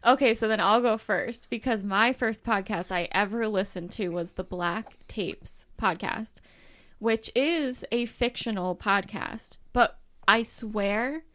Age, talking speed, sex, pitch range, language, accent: 10-29, 145 wpm, female, 190-230 Hz, English, American